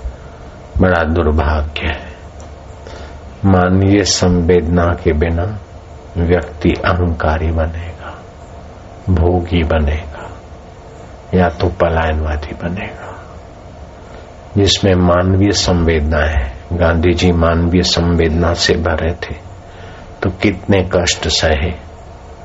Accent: native